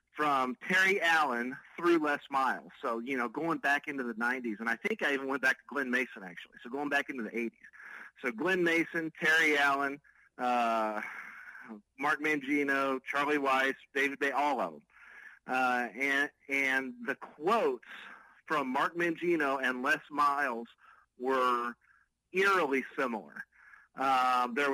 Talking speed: 150 wpm